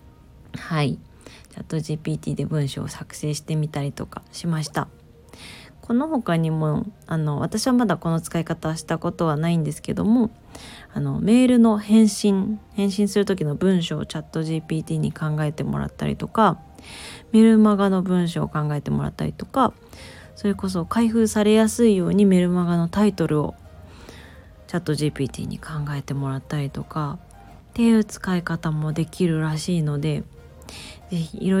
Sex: female